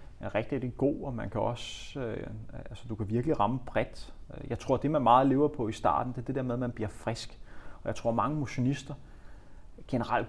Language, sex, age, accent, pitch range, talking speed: Danish, male, 30-49, native, 110-130 Hz, 220 wpm